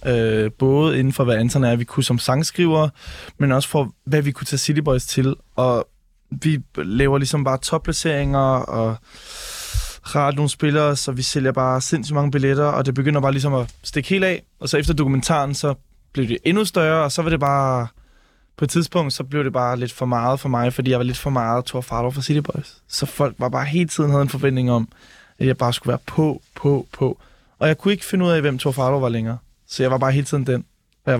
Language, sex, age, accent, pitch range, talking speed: Danish, male, 20-39, native, 125-150 Hz, 235 wpm